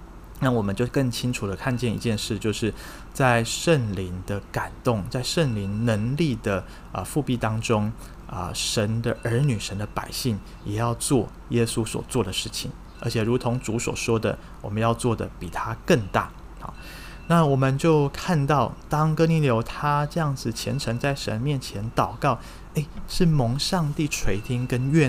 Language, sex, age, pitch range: Chinese, male, 20-39, 110-140 Hz